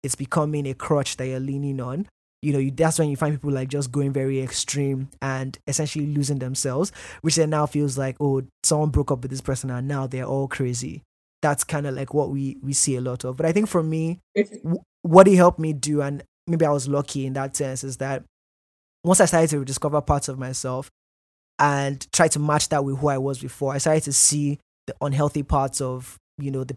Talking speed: 230 wpm